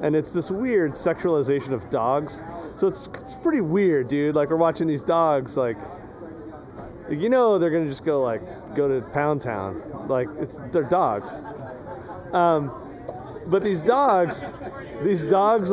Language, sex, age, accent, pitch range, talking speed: English, male, 30-49, American, 145-190 Hz, 155 wpm